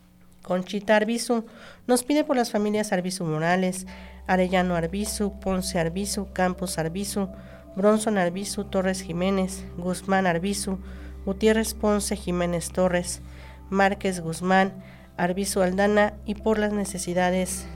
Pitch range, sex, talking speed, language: 160-200 Hz, female, 110 wpm, Spanish